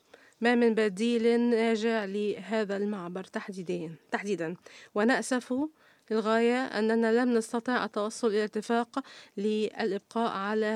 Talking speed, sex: 100 wpm, female